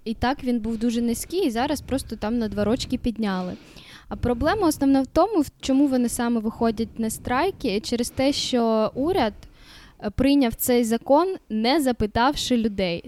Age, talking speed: 10-29, 160 wpm